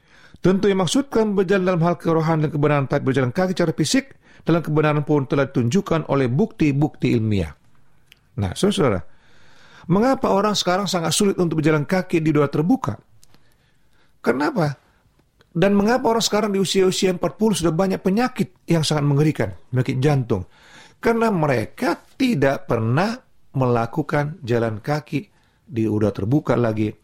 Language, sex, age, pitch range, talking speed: Indonesian, male, 40-59, 125-180 Hz, 140 wpm